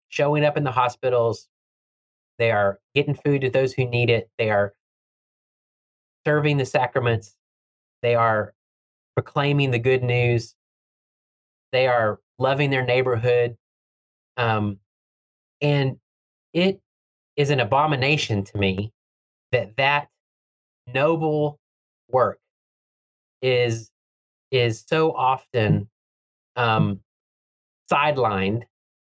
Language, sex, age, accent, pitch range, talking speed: English, male, 30-49, American, 100-145 Hz, 100 wpm